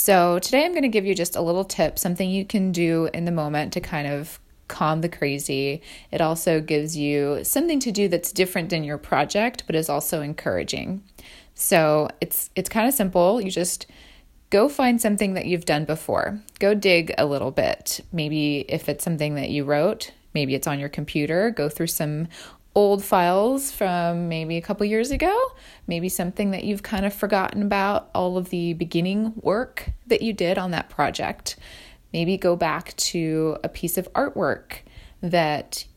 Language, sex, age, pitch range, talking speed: English, female, 20-39, 150-195 Hz, 185 wpm